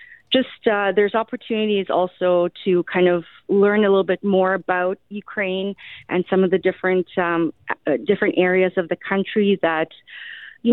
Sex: female